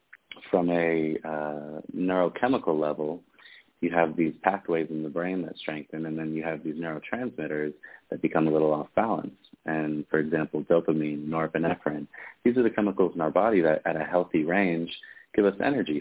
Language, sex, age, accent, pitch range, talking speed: English, male, 30-49, American, 75-85 Hz, 170 wpm